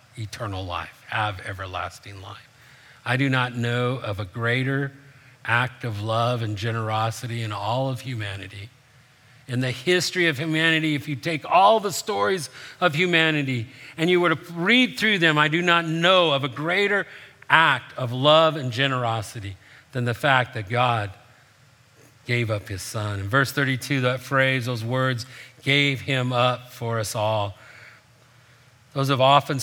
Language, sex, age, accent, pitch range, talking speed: English, male, 50-69, American, 115-140 Hz, 160 wpm